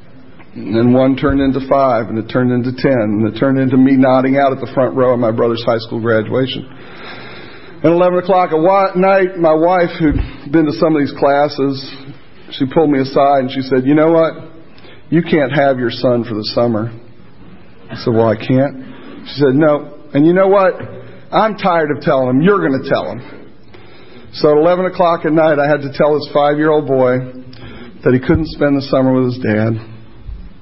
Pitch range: 130-165 Hz